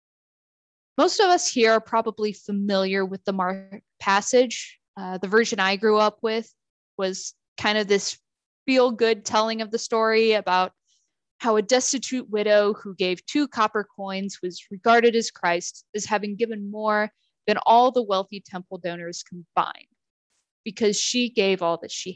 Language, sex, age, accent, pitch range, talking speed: English, female, 20-39, American, 195-250 Hz, 160 wpm